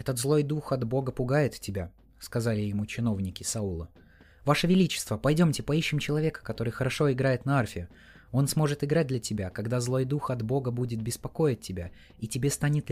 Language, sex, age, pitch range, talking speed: Russian, male, 20-39, 95-135 Hz, 170 wpm